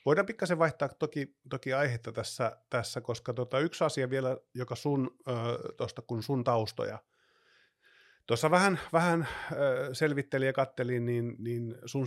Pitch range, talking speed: 105-130 Hz, 140 wpm